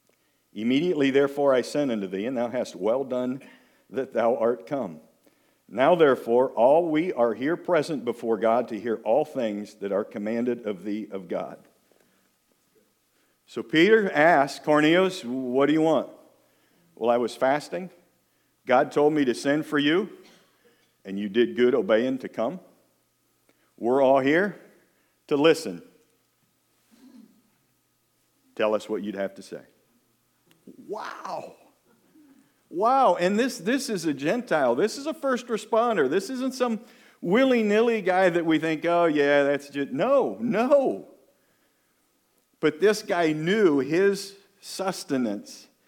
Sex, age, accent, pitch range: male, 50-69, American, 120-190 Hz